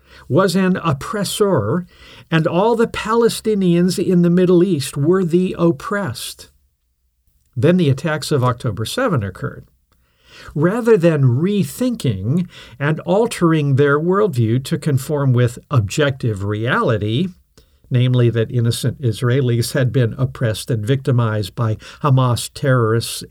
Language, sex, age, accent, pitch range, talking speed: English, male, 50-69, American, 115-170 Hz, 115 wpm